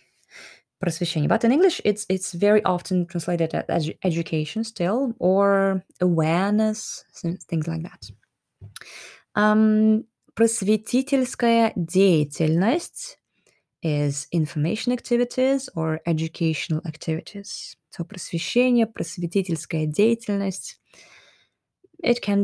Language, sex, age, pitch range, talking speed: Russian, female, 20-39, 160-200 Hz, 70 wpm